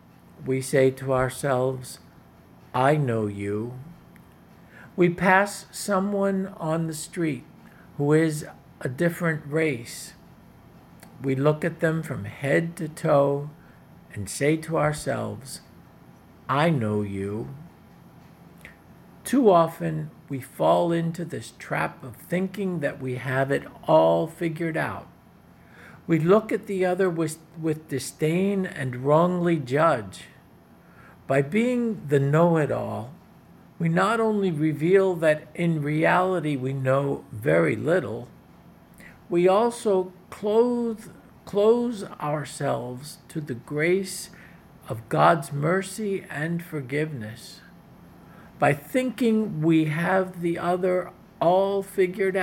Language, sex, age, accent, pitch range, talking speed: English, male, 50-69, American, 140-185 Hz, 110 wpm